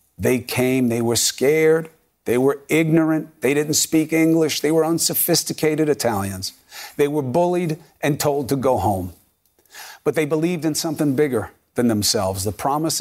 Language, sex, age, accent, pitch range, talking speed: English, male, 40-59, American, 105-145 Hz, 155 wpm